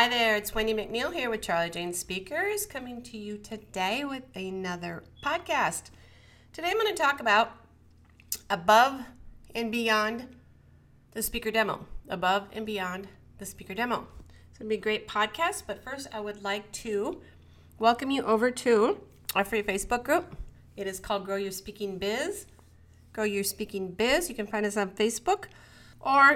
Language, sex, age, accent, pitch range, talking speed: English, female, 30-49, American, 195-245 Hz, 165 wpm